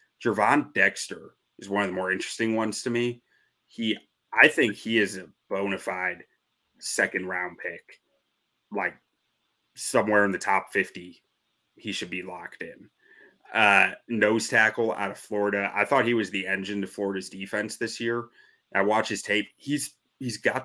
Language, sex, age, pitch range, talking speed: English, male, 30-49, 100-130 Hz, 165 wpm